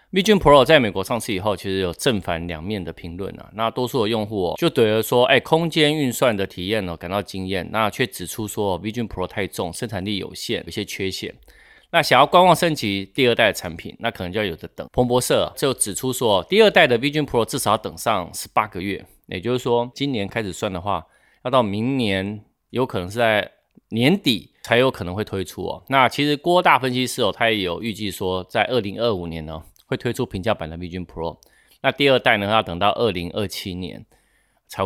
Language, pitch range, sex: Chinese, 90-120 Hz, male